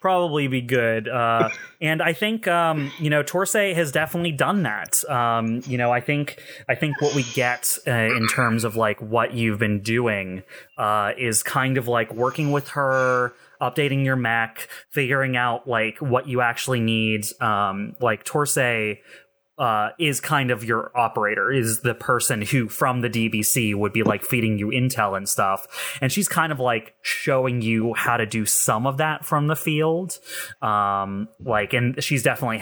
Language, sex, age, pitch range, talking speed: English, male, 20-39, 110-145 Hz, 180 wpm